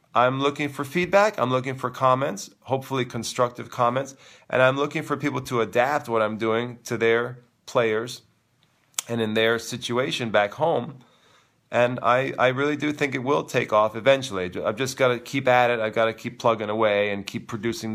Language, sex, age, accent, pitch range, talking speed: English, male, 40-59, American, 115-130 Hz, 190 wpm